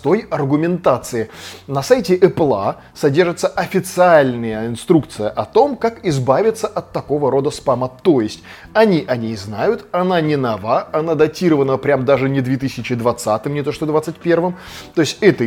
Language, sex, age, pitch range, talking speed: Russian, male, 20-39, 125-175 Hz, 140 wpm